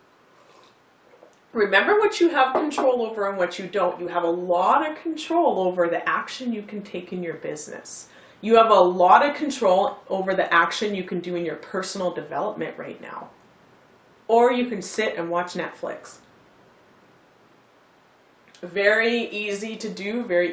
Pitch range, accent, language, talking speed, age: 180-260 Hz, American, English, 160 wpm, 30-49